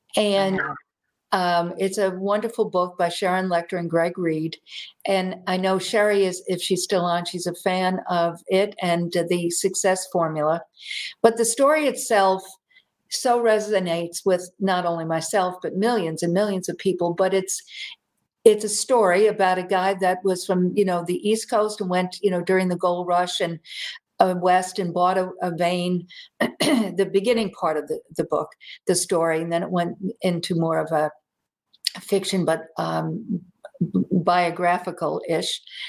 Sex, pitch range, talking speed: female, 175-205 Hz, 165 wpm